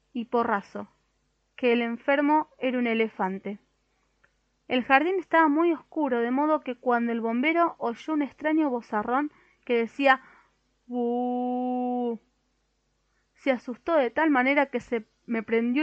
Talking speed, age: 135 wpm, 20-39